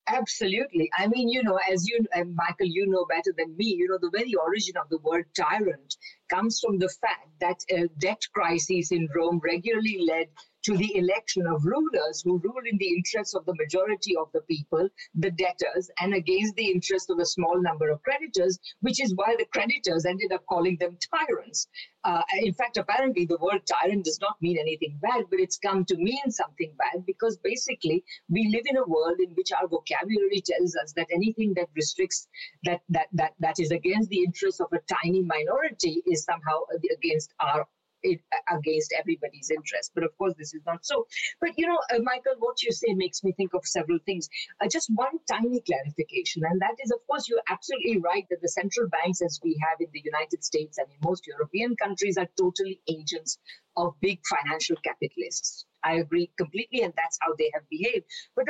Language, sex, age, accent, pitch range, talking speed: English, female, 50-69, Indian, 170-225 Hz, 205 wpm